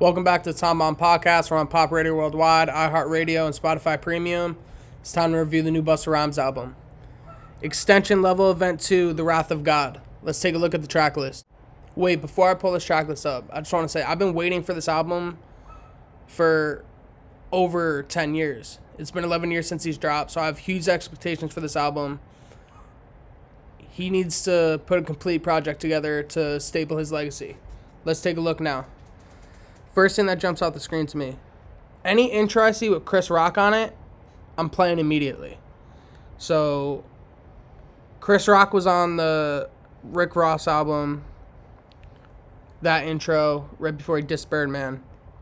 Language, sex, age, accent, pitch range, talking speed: English, male, 20-39, American, 145-175 Hz, 175 wpm